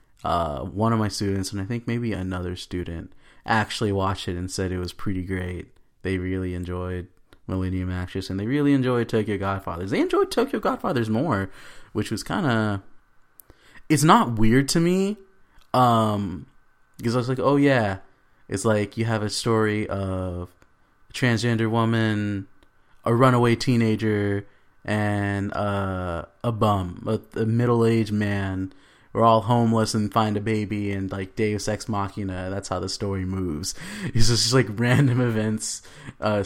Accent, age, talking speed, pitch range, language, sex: American, 20-39, 160 wpm, 95-115 Hz, English, male